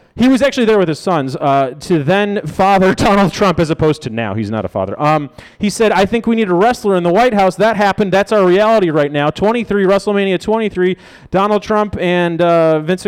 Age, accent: 30-49, American